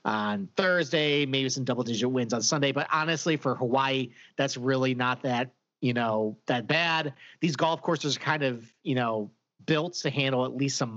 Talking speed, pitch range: 190 wpm, 125-160 Hz